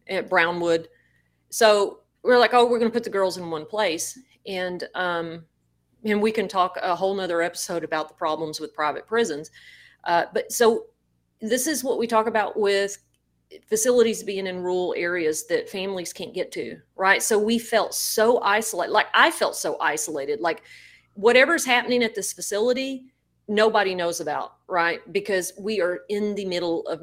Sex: female